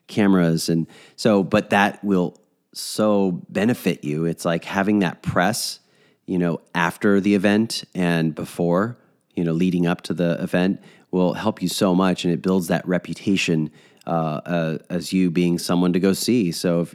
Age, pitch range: 30-49, 85-100 Hz